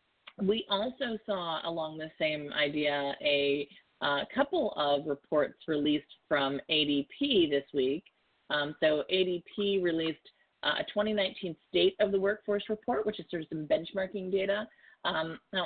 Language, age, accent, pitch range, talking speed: English, 30-49, American, 140-190 Hz, 145 wpm